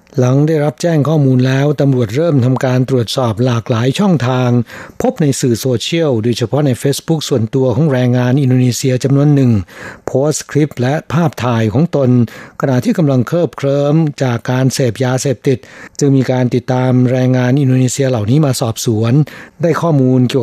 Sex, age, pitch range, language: male, 60-79, 125-150 Hz, Thai